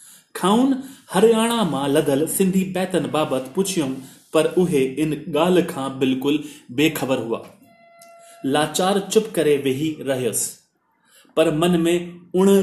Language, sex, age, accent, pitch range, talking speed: Hindi, male, 30-49, native, 145-180 Hz, 100 wpm